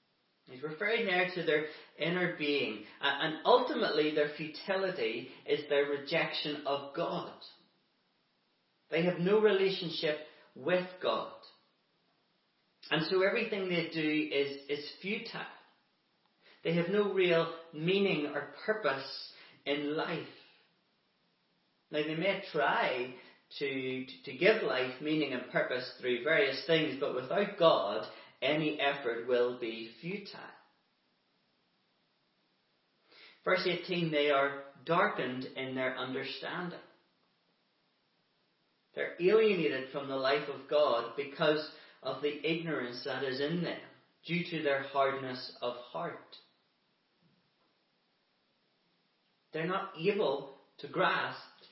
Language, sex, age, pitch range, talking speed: English, male, 40-59, 135-175 Hz, 115 wpm